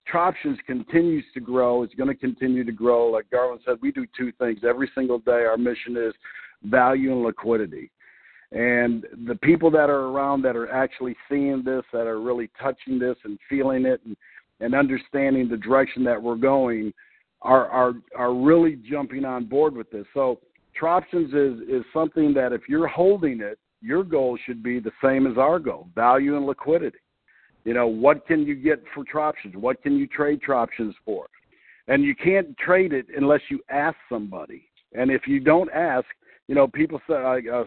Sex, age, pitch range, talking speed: male, 50-69, 125-150 Hz, 185 wpm